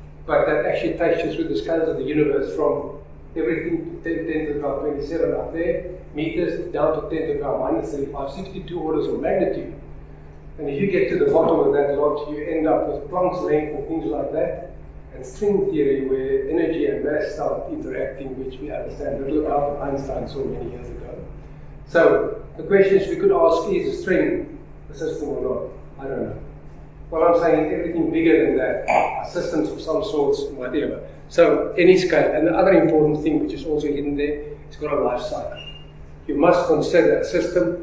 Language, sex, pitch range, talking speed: English, male, 145-205 Hz, 200 wpm